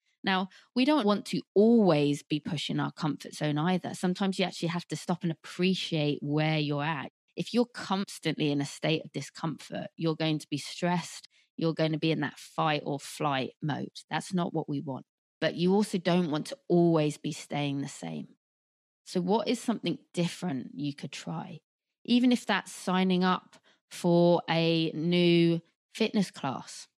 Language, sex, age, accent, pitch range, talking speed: English, female, 20-39, British, 155-190 Hz, 180 wpm